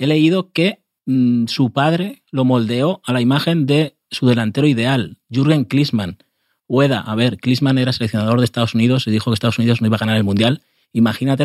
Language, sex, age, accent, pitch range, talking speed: Spanish, male, 30-49, Spanish, 115-155 Hz, 200 wpm